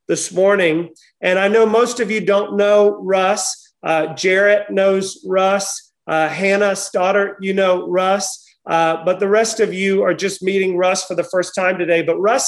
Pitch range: 180-210 Hz